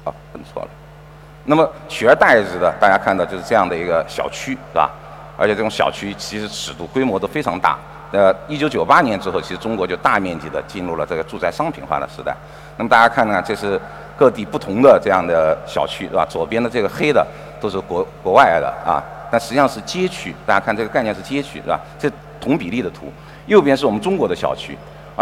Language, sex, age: Chinese, male, 50-69